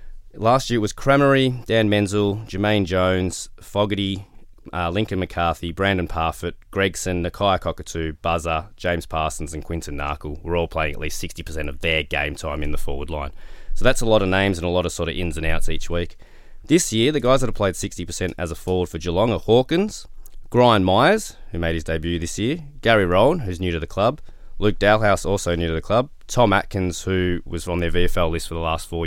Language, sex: English, male